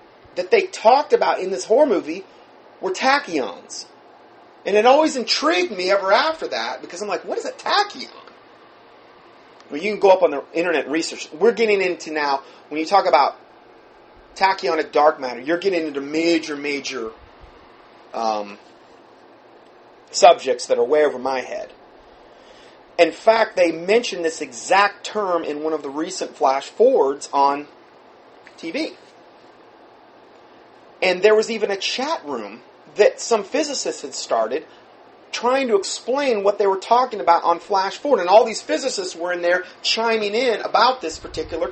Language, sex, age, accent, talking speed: English, male, 30-49, American, 155 wpm